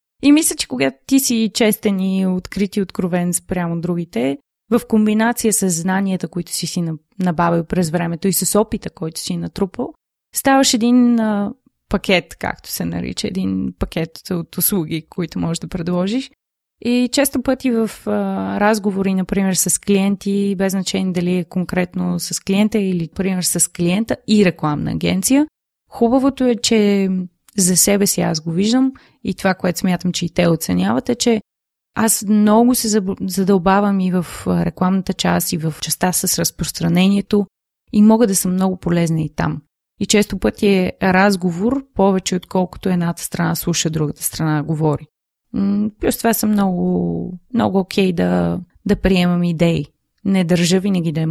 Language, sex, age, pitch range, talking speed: Bulgarian, female, 20-39, 170-210 Hz, 155 wpm